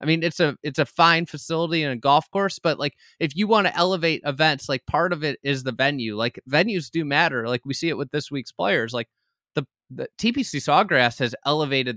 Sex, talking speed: male, 230 wpm